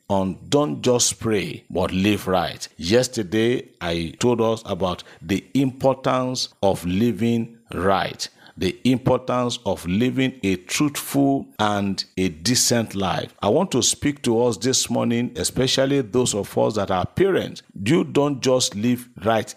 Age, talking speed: 50-69, 145 wpm